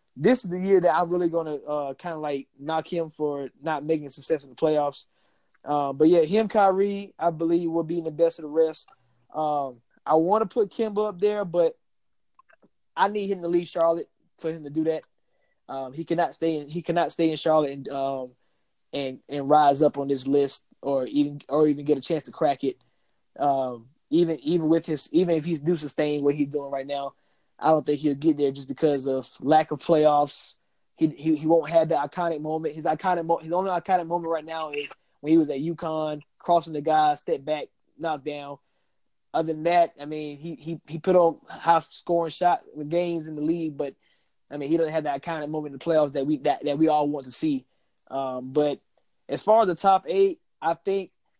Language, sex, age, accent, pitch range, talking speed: English, male, 20-39, American, 145-170 Hz, 225 wpm